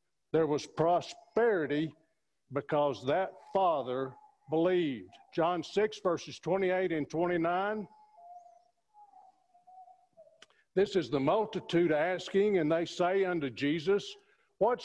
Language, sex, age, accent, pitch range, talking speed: English, male, 50-69, American, 145-200 Hz, 95 wpm